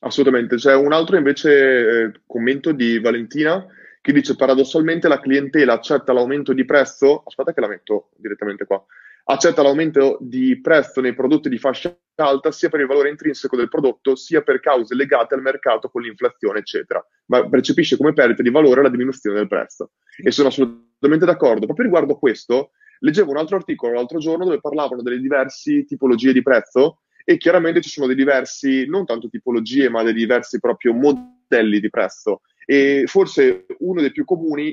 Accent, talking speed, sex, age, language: native, 175 wpm, male, 20-39, Italian